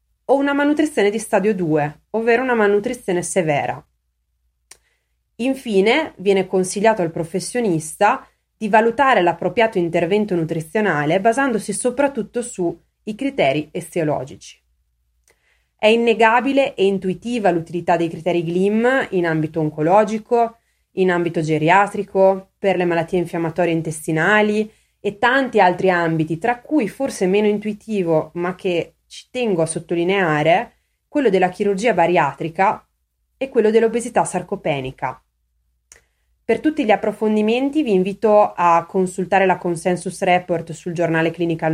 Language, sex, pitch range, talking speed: Italian, female, 170-220 Hz, 115 wpm